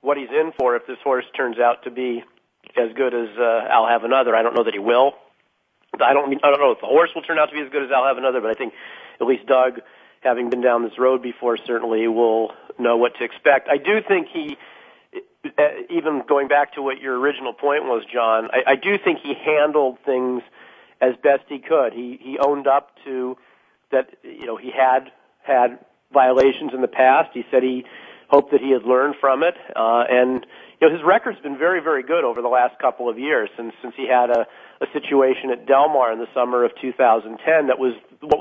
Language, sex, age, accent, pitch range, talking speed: English, male, 40-59, American, 120-140 Hz, 230 wpm